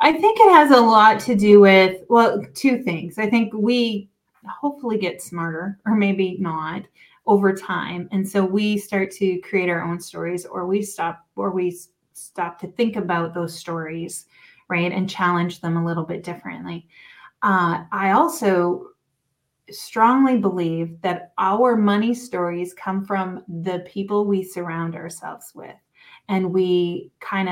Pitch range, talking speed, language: 175-205 Hz, 155 wpm, English